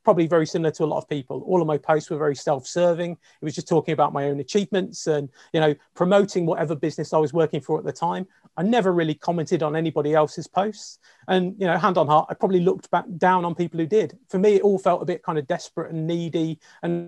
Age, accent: 30-49, British